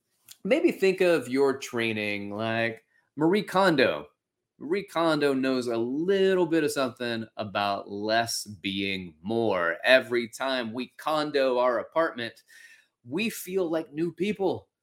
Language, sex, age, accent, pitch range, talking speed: English, male, 30-49, American, 115-165 Hz, 125 wpm